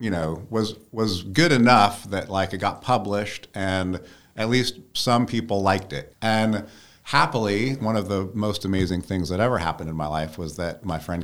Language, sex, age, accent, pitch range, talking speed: English, male, 50-69, American, 80-105 Hz, 190 wpm